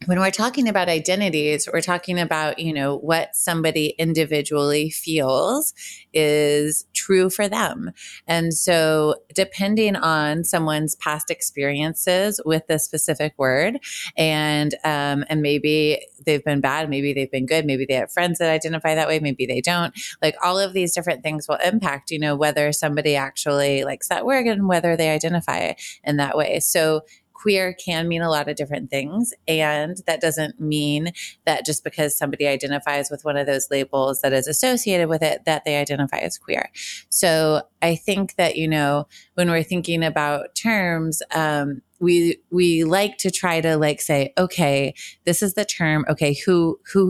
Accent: American